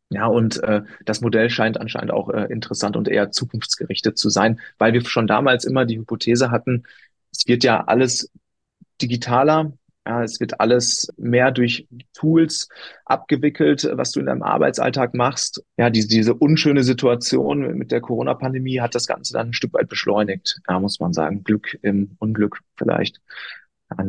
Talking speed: 170 wpm